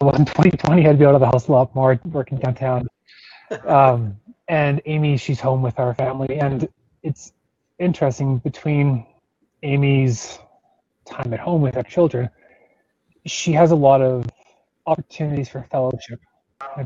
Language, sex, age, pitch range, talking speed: English, male, 20-39, 125-145 Hz, 155 wpm